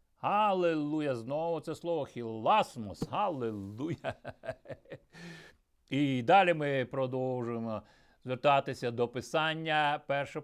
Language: Ukrainian